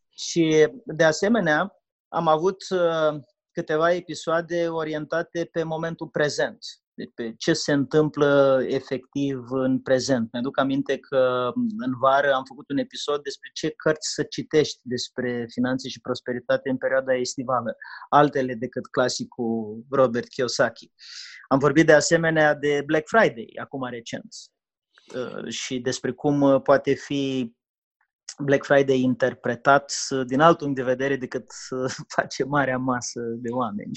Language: English